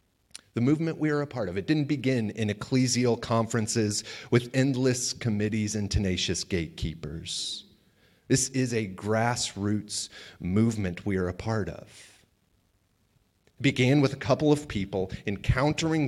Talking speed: 140 wpm